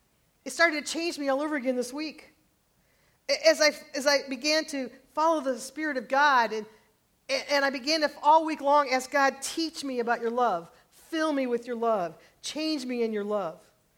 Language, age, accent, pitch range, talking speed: English, 40-59, American, 215-285 Hz, 200 wpm